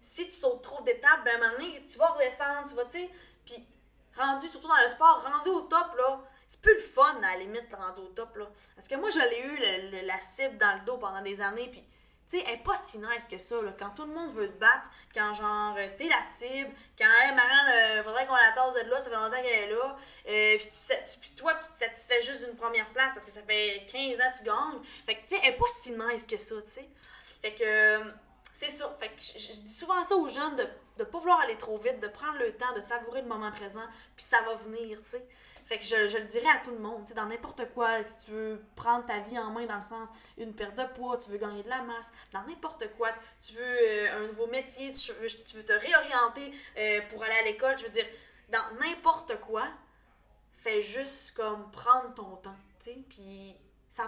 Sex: female